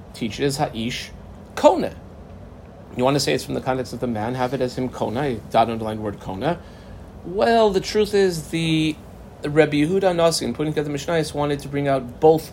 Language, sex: English, male